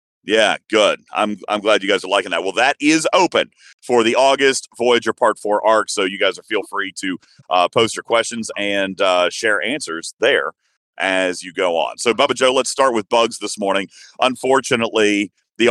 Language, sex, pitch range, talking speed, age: English, male, 105-125 Hz, 200 wpm, 40-59